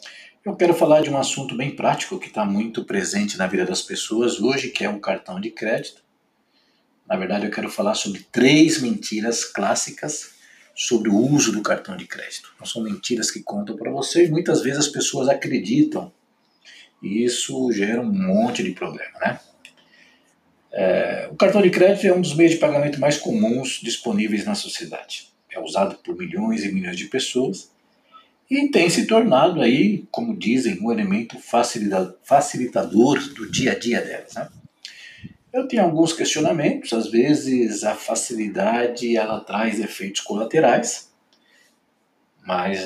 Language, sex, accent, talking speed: Portuguese, male, Brazilian, 155 wpm